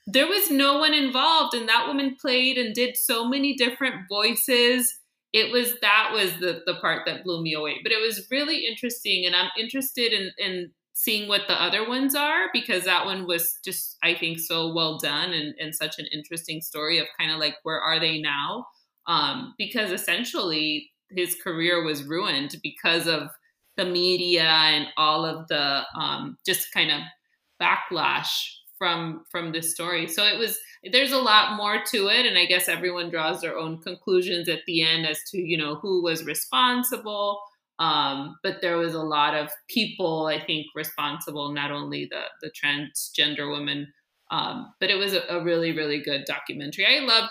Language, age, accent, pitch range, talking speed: English, 20-39, American, 155-215 Hz, 185 wpm